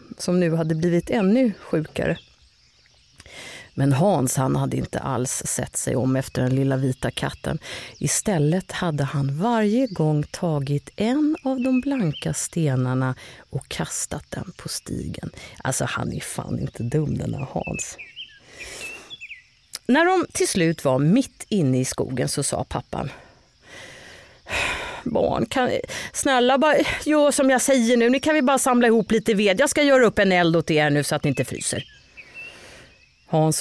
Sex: female